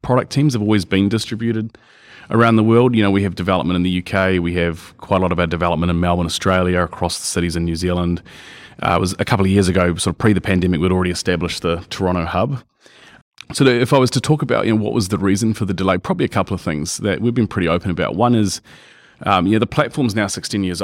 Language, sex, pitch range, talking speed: English, male, 90-105 Hz, 260 wpm